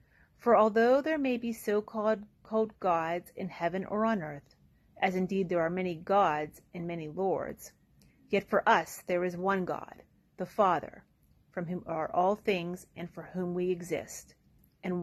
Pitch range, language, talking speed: 170-210 Hz, English, 165 wpm